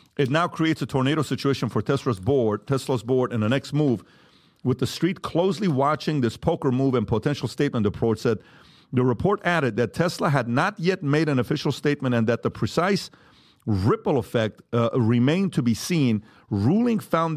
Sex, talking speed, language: male, 185 wpm, English